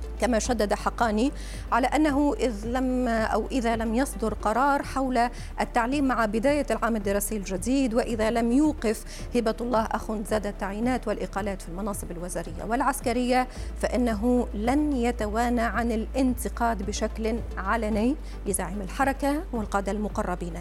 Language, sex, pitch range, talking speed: Arabic, female, 210-255 Hz, 125 wpm